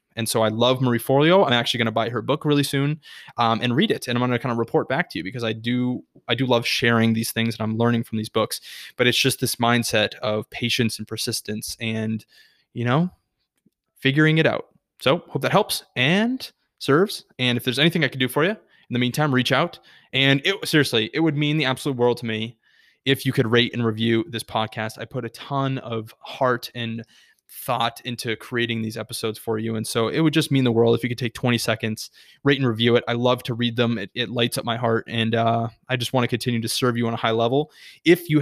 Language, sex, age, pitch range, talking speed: English, male, 20-39, 115-135 Hz, 245 wpm